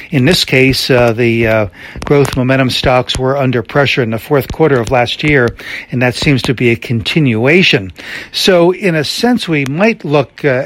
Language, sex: English, male